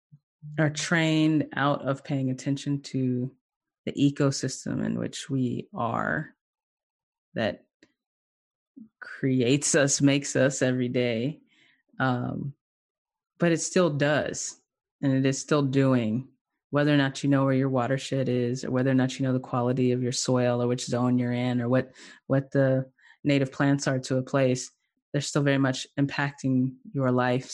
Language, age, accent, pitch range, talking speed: English, 20-39, American, 130-140 Hz, 155 wpm